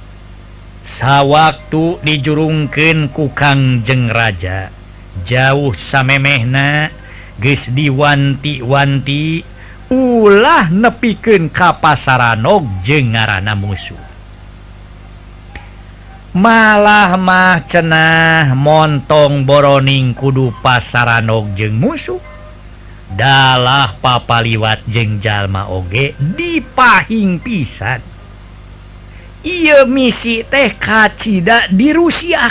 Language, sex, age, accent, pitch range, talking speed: Indonesian, male, 50-69, native, 100-160 Hz, 70 wpm